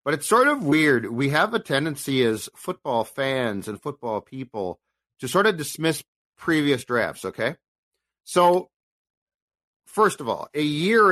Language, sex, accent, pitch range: English, male, American, 125-155 Hz